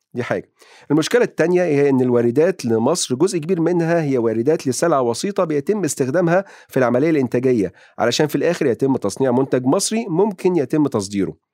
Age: 40-59